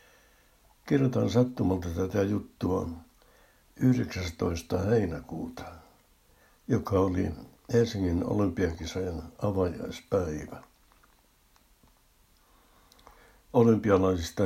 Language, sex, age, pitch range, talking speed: Finnish, male, 60-79, 85-100 Hz, 50 wpm